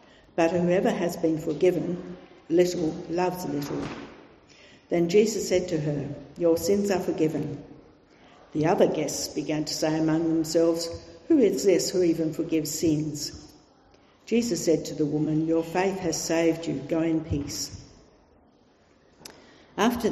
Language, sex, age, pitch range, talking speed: English, female, 60-79, 155-175 Hz, 135 wpm